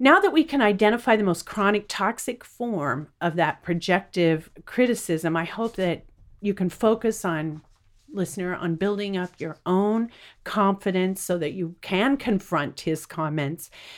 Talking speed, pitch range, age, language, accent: 150 wpm, 160-215 Hz, 50-69, English, American